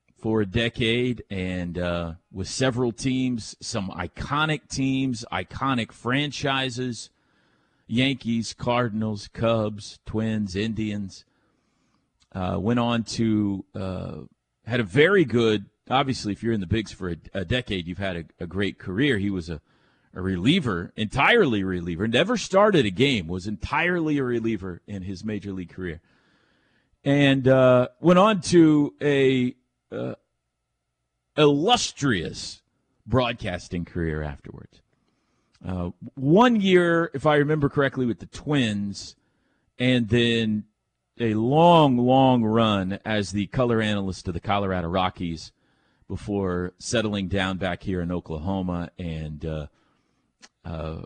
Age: 40-59